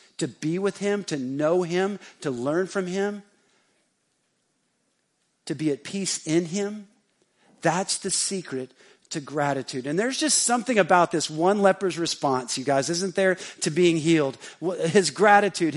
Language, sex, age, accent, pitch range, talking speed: English, male, 50-69, American, 160-210 Hz, 150 wpm